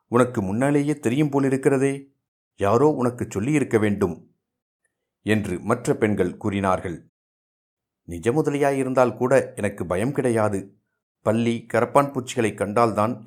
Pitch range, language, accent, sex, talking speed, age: 95-120 Hz, Tamil, native, male, 100 wpm, 50-69